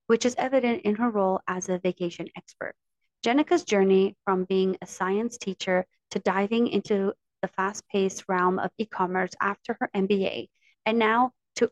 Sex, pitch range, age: female, 190-240 Hz, 30-49